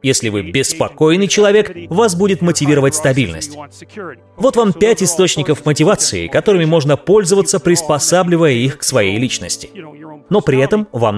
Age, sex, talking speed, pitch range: 30-49, male, 135 wpm, 140-185 Hz